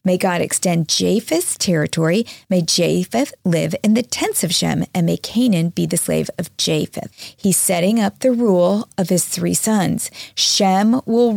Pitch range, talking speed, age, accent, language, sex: 180-220 Hz, 170 wpm, 40-59, American, English, female